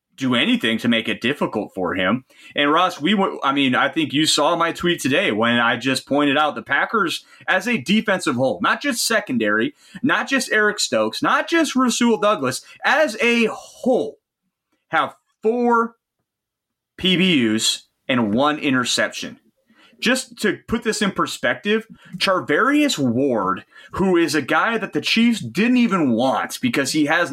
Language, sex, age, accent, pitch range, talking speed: English, male, 30-49, American, 145-220 Hz, 155 wpm